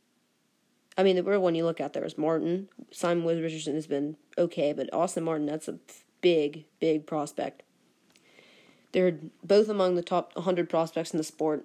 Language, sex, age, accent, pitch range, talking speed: English, female, 20-39, American, 160-200 Hz, 175 wpm